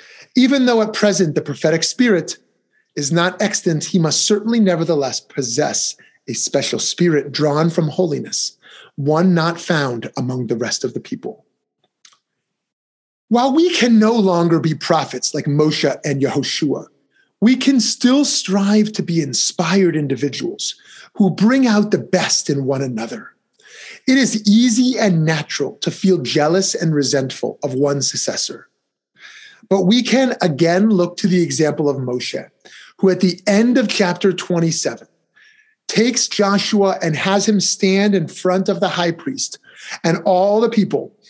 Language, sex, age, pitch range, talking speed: English, male, 30-49, 160-225 Hz, 150 wpm